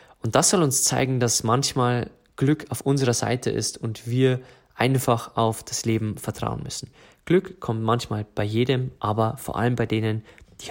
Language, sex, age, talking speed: German, male, 20-39, 175 wpm